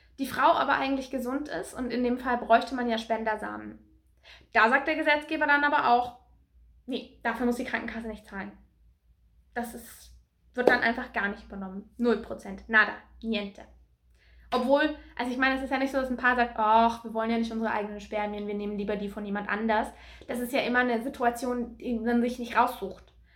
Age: 20-39